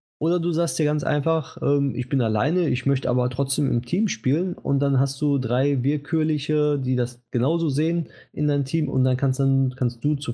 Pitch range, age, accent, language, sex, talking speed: 105-140 Hz, 20-39, German, German, male, 215 wpm